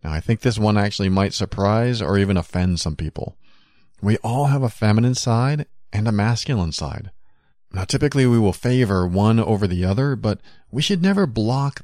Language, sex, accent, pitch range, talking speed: English, male, American, 90-125 Hz, 190 wpm